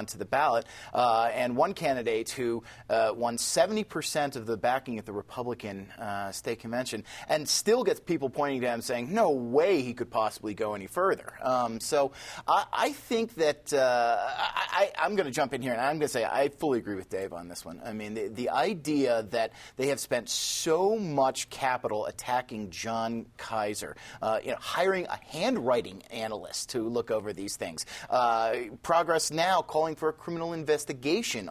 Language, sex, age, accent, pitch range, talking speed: English, male, 30-49, American, 115-160 Hz, 180 wpm